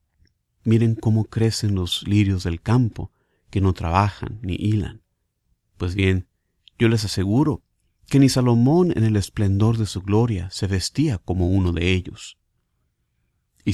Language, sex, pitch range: Spanish, male, 95-120 Hz